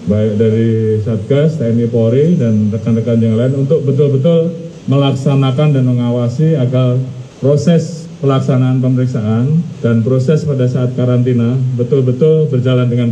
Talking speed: 120 wpm